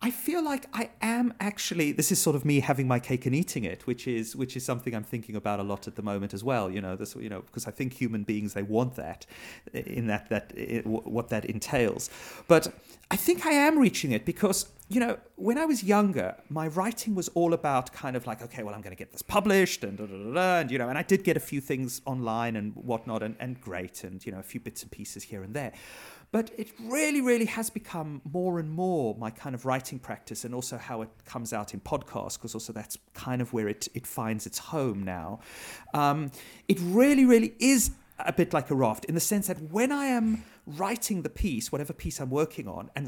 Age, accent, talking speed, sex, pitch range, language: 40-59, British, 240 wpm, male, 115-185 Hz, English